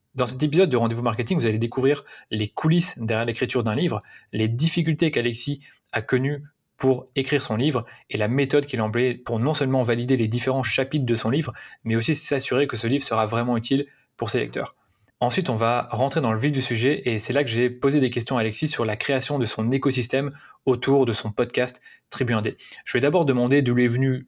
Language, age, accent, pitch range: French, 20-39, French, 115-135 Hz